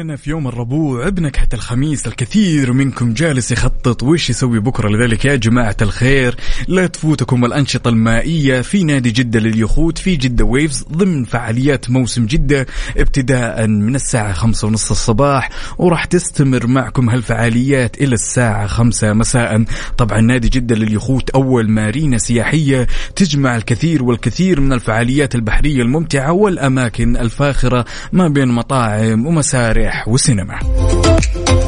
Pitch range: 115-140 Hz